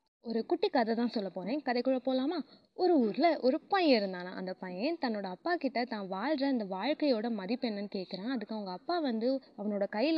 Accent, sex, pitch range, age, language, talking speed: native, female, 205-280 Hz, 20-39, Tamil, 175 wpm